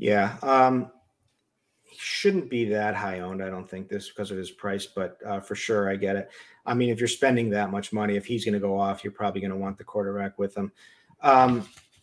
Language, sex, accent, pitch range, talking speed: English, male, American, 105-125 Hz, 235 wpm